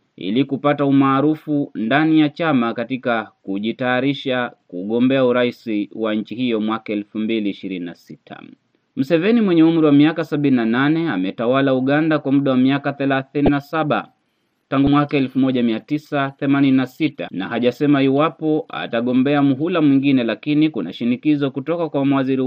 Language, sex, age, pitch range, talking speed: Swahili, male, 30-49, 125-150 Hz, 120 wpm